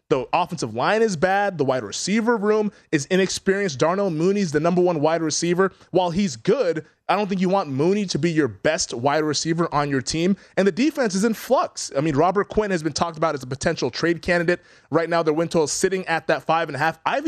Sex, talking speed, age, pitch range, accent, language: male, 240 wpm, 20-39, 135-180 Hz, American, English